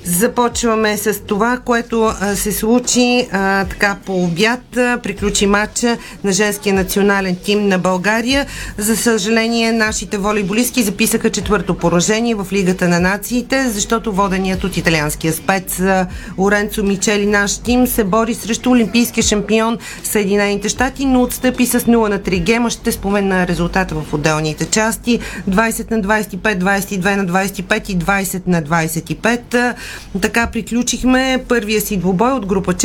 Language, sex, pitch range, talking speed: Bulgarian, female, 195-235 Hz, 140 wpm